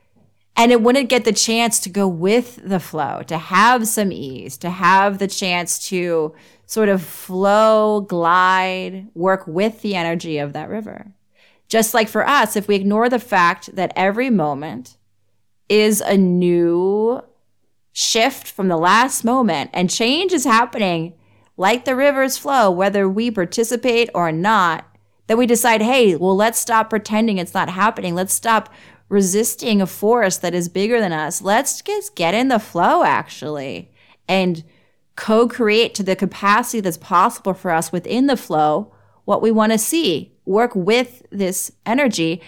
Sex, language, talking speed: female, English, 160 wpm